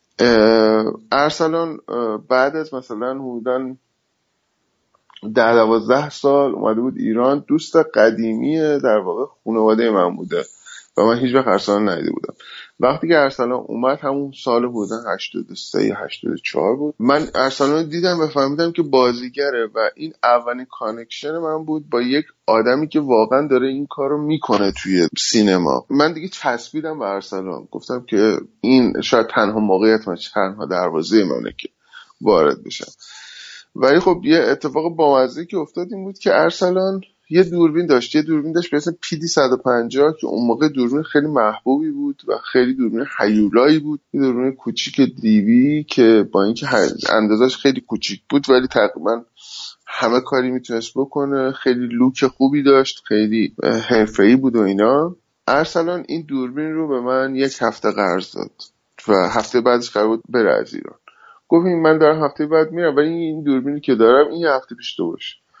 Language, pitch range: Persian, 120-155 Hz